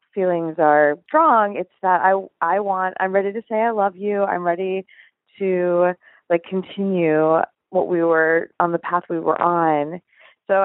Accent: American